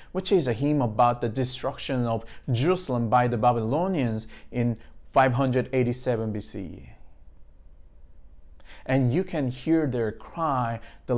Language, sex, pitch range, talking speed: English, male, 95-140 Hz, 120 wpm